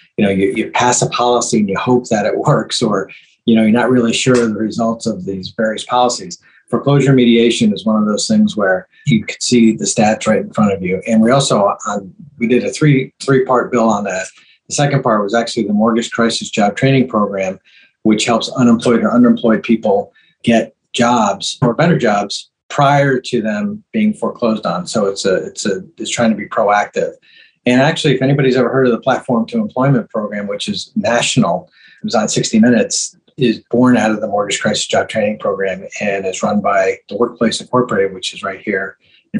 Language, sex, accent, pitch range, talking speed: English, male, American, 115-140 Hz, 210 wpm